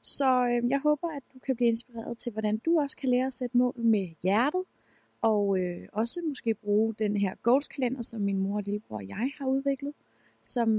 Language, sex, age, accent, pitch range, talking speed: Danish, female, 20-39, native, 190-240 Hz, 210 wpm